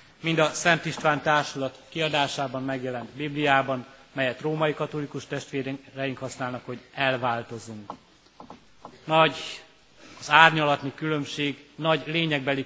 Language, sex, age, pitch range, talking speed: Hungarian, male, 30-49, 135-150 Hz, 100 wpm